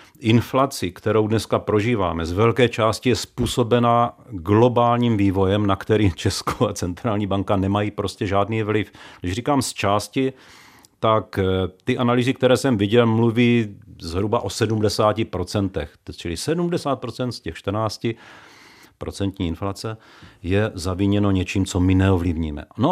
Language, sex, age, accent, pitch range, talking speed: Czech, male, 40-59, native, 100-125 Hz, 130 wpm